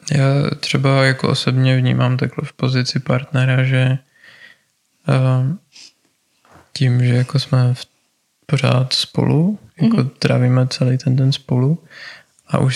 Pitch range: 125-140 Hz